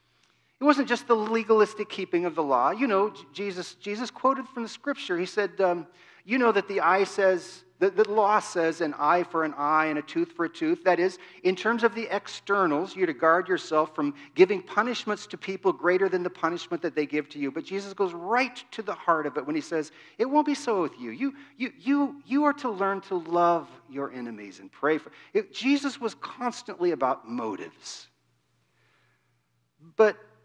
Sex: male